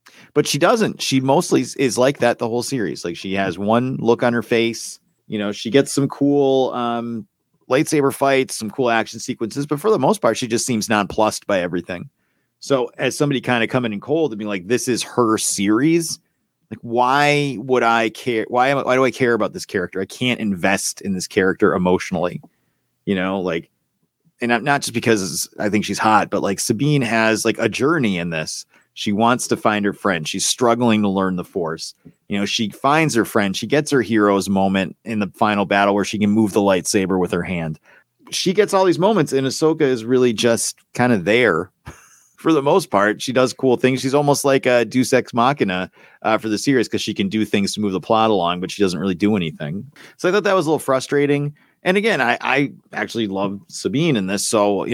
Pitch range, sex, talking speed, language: 100-135 Hz, male, 220 wpm, English